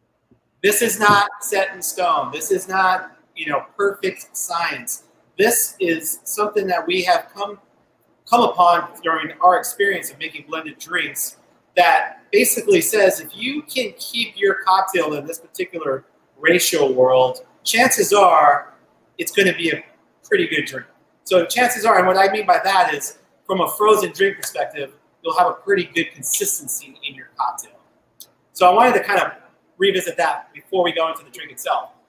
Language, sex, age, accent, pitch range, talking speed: English, male, 30-49, American, 160-230 Hz, 170 wpm